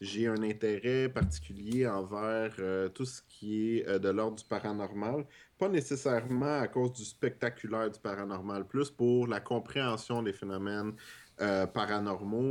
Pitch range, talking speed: 100-120 Hz, 150 wpm